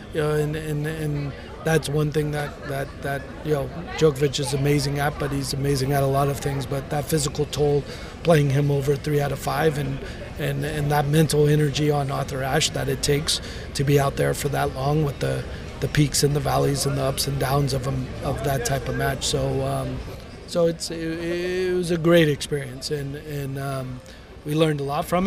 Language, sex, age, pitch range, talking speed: English, male, 30-49, 135-150 Hz, 220 wpm